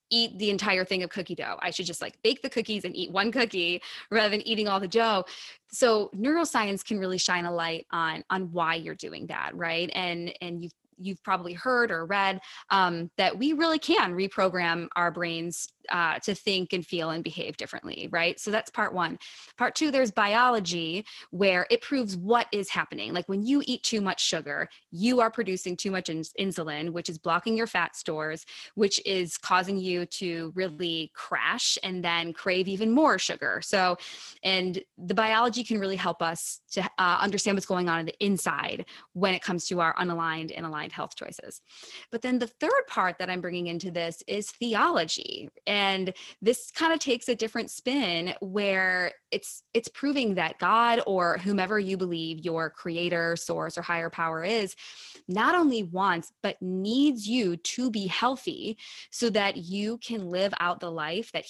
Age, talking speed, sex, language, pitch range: 20-39, 185 wpm, female, English, 175-220 Hz